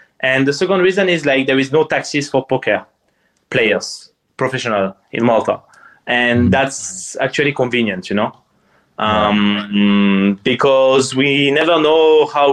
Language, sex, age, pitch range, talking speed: English, male, 20-39, 120-135 Hz, 135 wpm